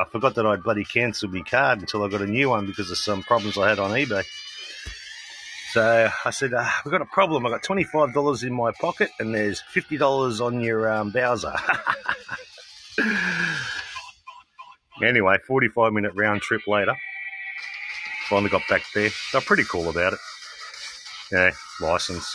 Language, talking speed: English, 165 wpm